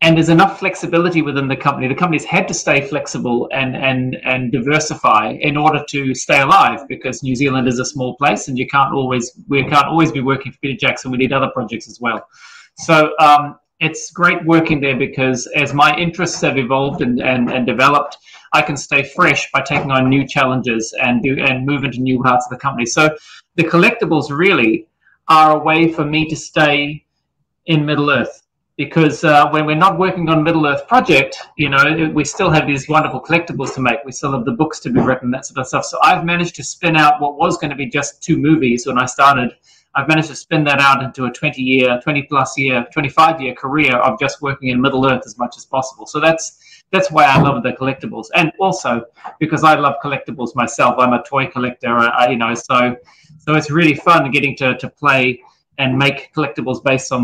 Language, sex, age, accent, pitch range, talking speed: Italian, male, 30-49, Australian, 130-155 Hz, 215 wpm